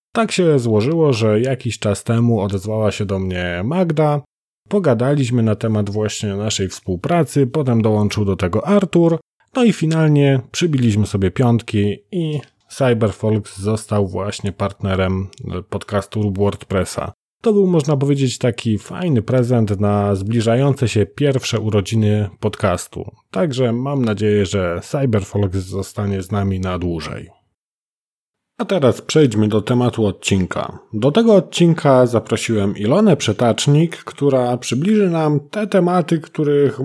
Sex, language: male, Polish